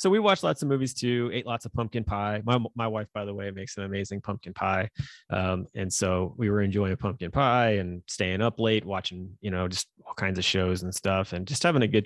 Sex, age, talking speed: male, 20-39, 255 wpm